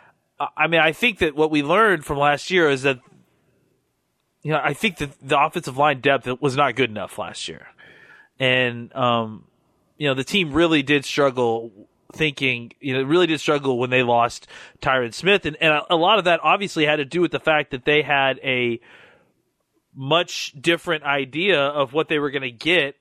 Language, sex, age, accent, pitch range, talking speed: English, male, 30-49, American, 130-155 Hz, 200 wpm